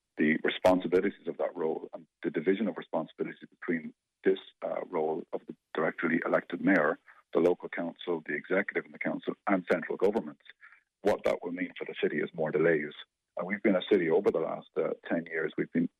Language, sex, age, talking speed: English, male, 50-69, 200 wpm